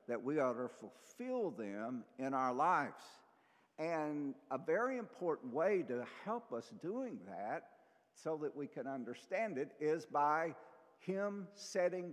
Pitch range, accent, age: 125-195 Hz, American, 60-79